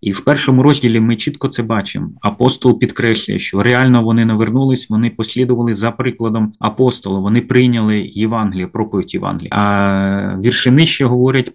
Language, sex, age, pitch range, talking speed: Ukrainian, male, 30-49, 105-125 Hz, 145 wpm